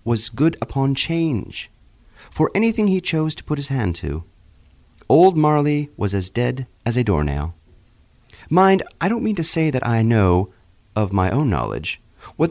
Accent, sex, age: American, male, 40-59